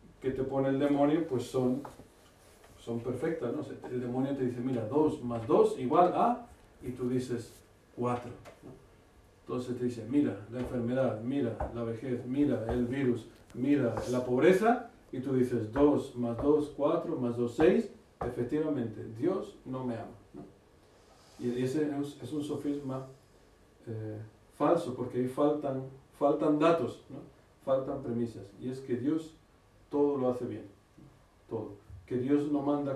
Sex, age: male, 50-69